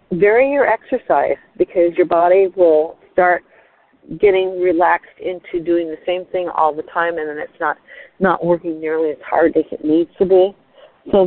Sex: female